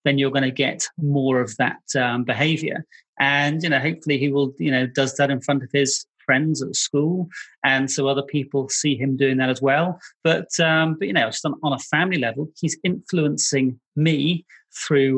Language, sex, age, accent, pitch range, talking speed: English, male, 30-49, British, 140-170 Hz, 205 wpm